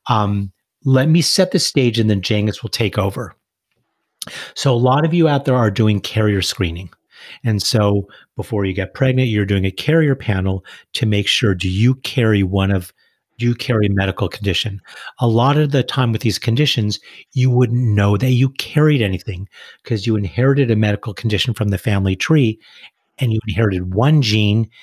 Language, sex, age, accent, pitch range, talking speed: English, male, 40-59, American, 100-125 Hz, 190 wpm